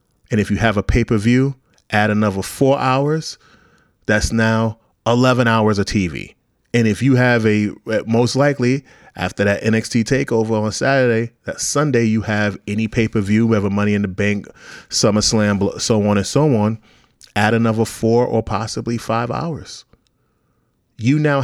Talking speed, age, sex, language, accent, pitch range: 155 wpm, 30-49, male, English, American, 105-120 Hz